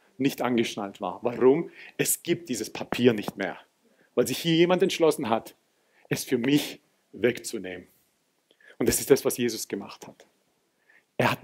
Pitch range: 125-185 Hz